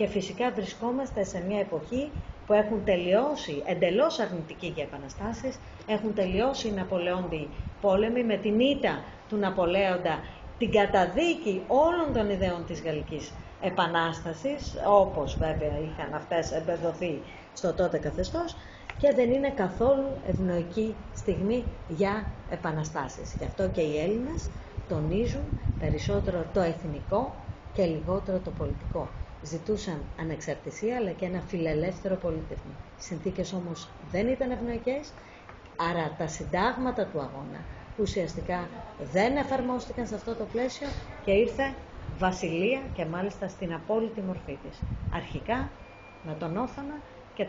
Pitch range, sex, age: 170-220 Hz, female, 30-49